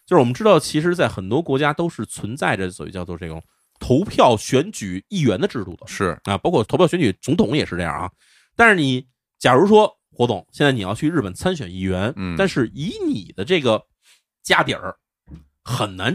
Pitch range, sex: 95-155 Hz, male